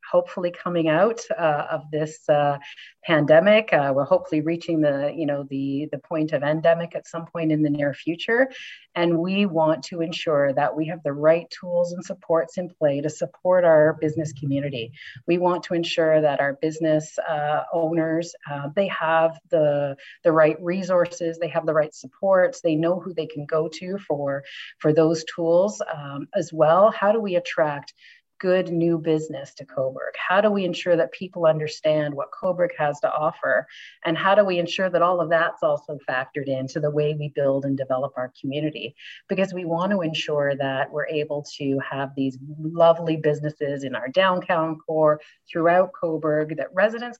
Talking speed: 185 wpm